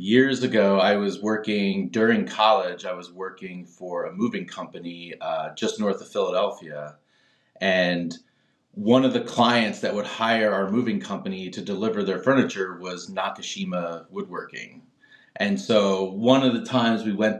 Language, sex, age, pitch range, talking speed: English, male, 30-49, 90-125 Hz, 155 wpm